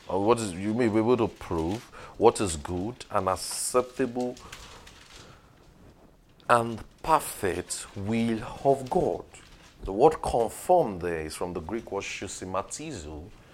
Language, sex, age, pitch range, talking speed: English, male, 40-59, 95-120 Hz, 130 wpm